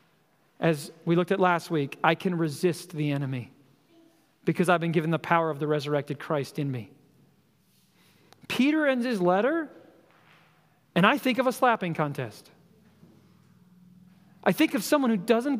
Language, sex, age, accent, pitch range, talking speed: English, male, 40-59, American, 165-220 Hz, 155 wpm